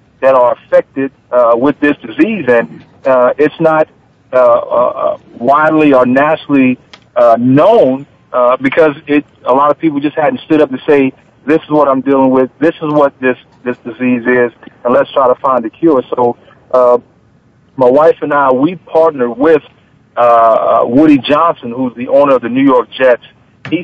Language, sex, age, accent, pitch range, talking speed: English, male, 50-69, American, 125-155 Hz, 180 wpm